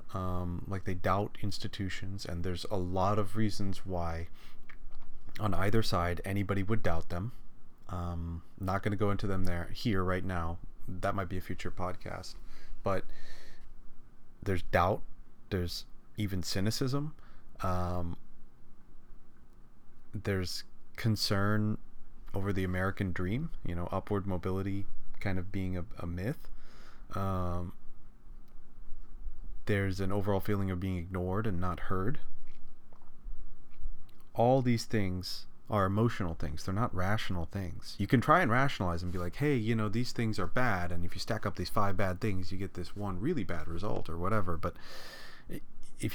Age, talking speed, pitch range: 30-49, 150 wpm, 90-110 Hz